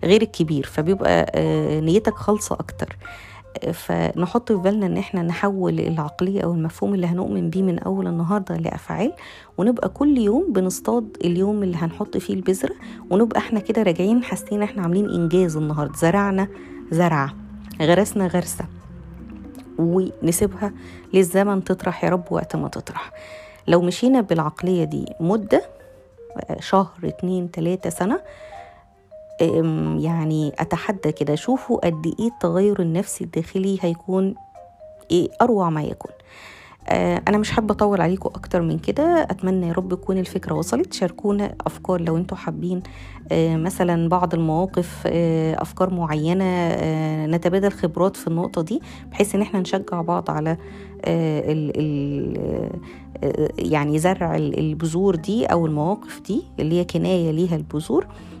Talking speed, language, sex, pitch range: 135 wpm, Arabic, female, 160-200 Hz